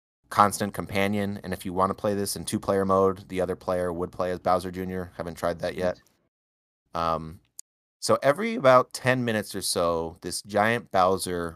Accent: American